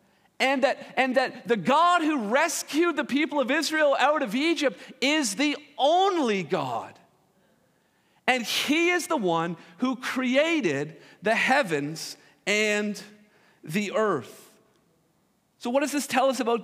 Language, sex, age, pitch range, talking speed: English, male, 40-59, 220-290 Hz, 135 wpm